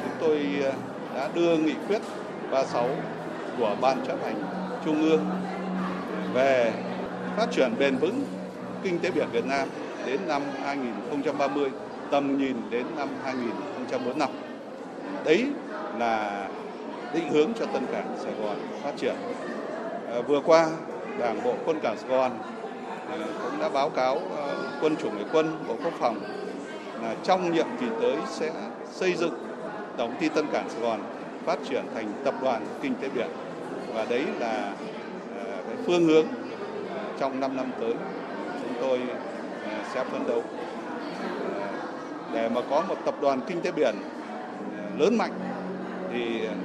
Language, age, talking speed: Vietnamese, 60-79, 140 wpm